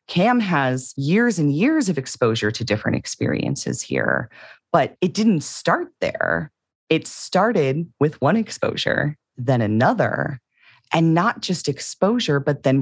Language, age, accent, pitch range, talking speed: English, 30-49, American, 120-180 Hz, 135 wpm